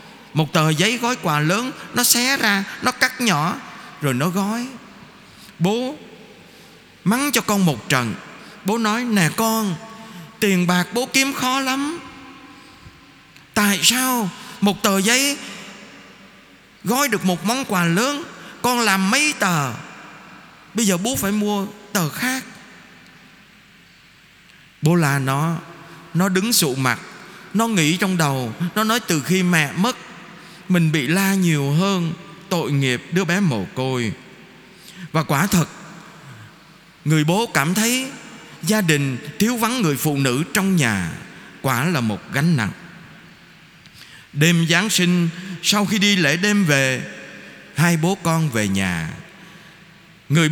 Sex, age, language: male, 20-39, Vietnamese